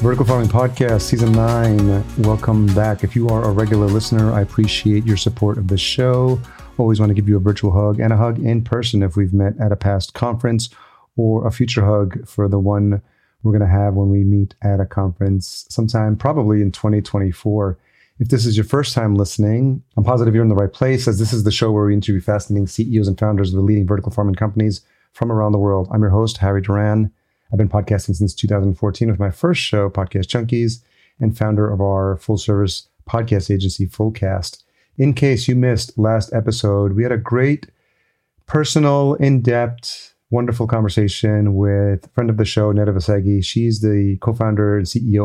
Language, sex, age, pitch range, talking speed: English, male, 30-49, 100-115 Hz, 195 wpm